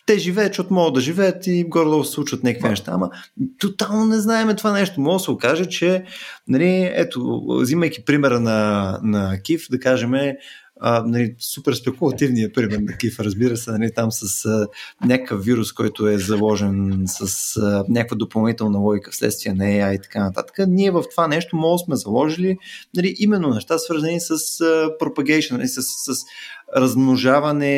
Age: 20-39